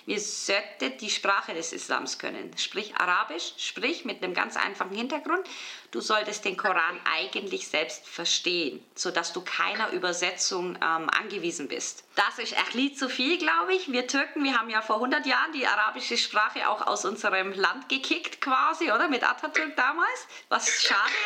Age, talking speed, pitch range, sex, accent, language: 20-39, 165 wpm, 200-285 Hz, female, German, German